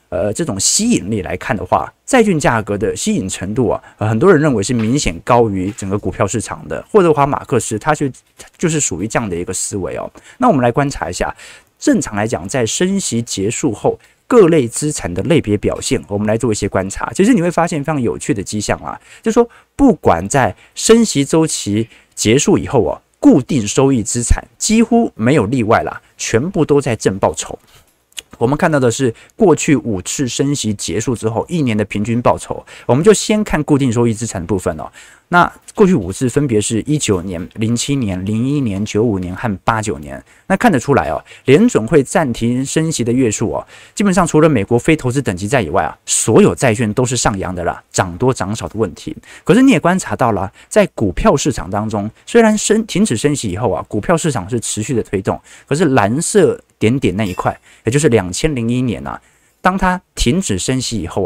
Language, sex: Chinese, male